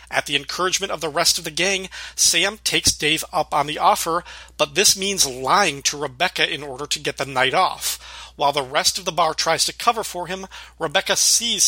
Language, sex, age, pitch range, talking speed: English, male, 40-59, 150-190 Hz, 215 wpm